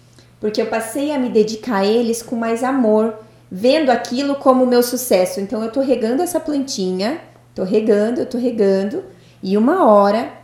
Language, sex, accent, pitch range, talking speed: Portuguese, female, Brazilian, 195-260 Hz, 180 wpm